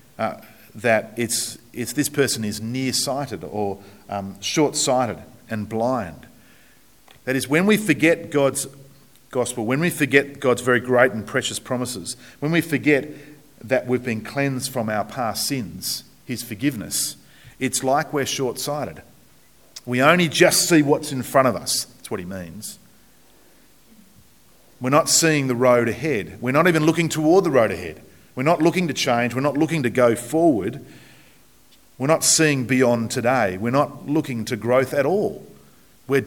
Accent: Australian